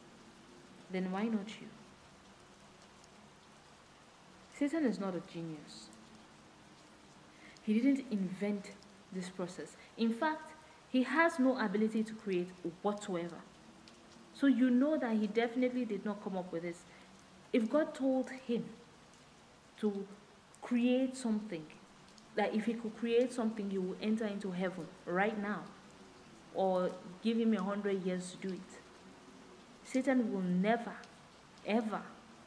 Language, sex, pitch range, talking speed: English, female, 190-235 Hz, 125 wpm